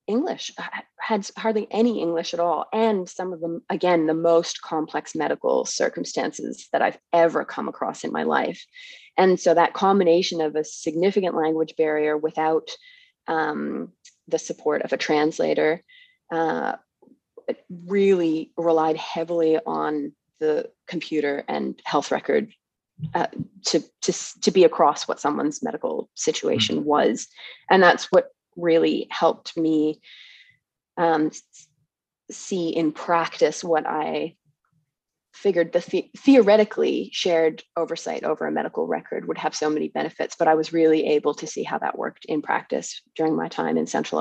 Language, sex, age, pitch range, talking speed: English, female, 20-39, 155-195 Hz, 145 wpm